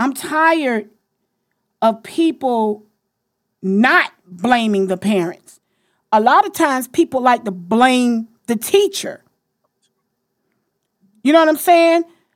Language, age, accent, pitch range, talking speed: English, 40-59, American, 230-315 Hz, 110 wpm